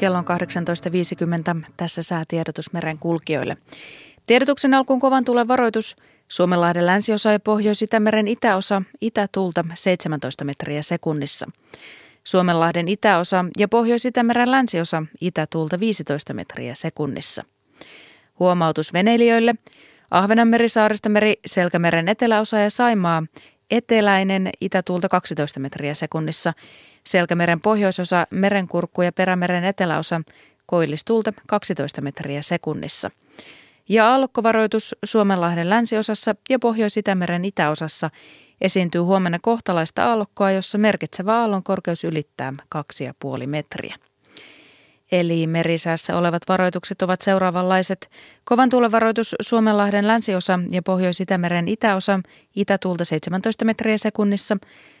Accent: native